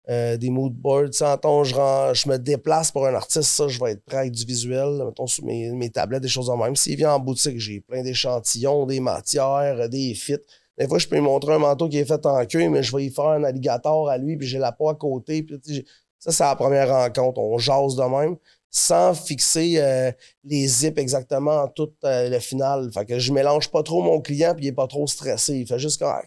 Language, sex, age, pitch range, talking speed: French, male, 30-49, 130-150 Hz, 250 wpm